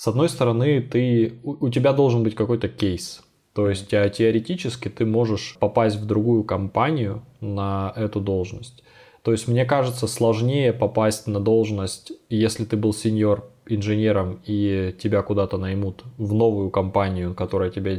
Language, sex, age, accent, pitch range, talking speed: Russian, male, 20-39, native, 100-115 Hz, 140 wpm